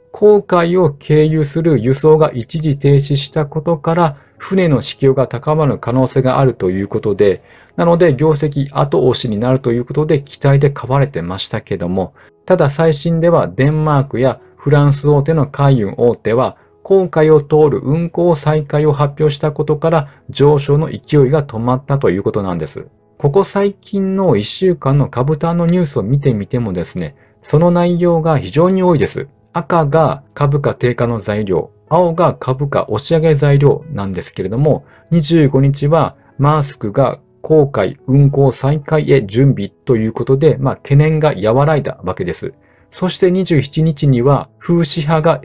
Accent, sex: native, male